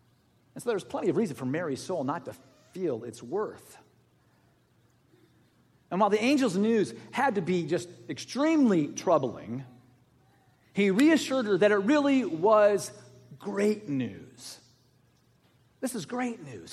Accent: American